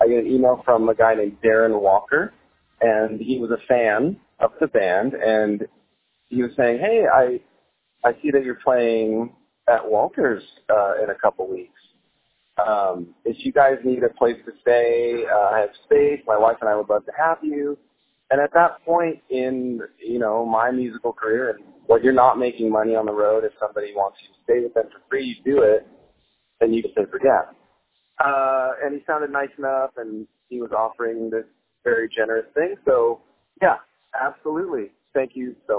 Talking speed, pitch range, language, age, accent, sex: 190 wpm, 115-155 Hz, English, 30-49, American, male